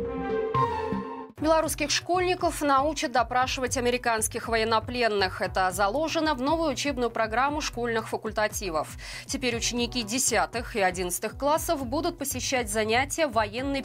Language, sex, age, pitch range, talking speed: Russian, female, 20-39, 215-280 Hz, 105 wpm